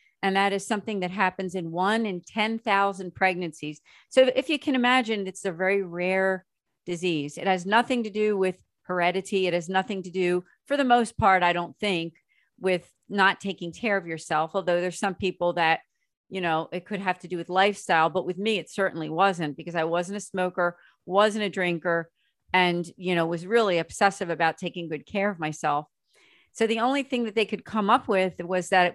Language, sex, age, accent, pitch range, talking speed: English, female, 40-59, American, 170-200 Hz, 205 wpm